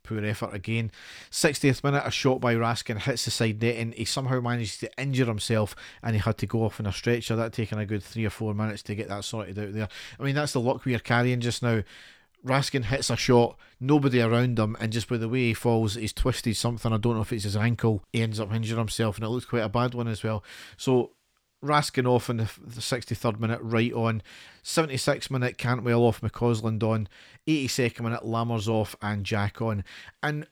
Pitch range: 115-130 Hz